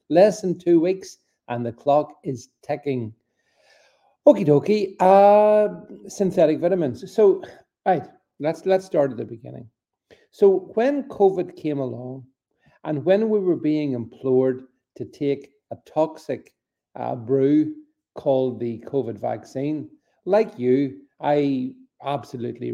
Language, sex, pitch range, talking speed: English, male, 125-175 Hz, 125 wpm